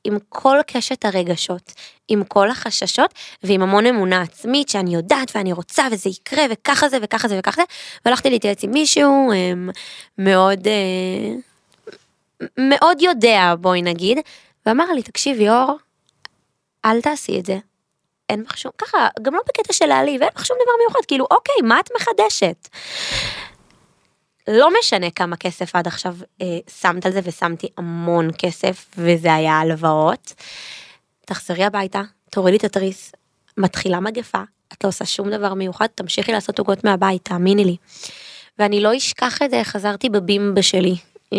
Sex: female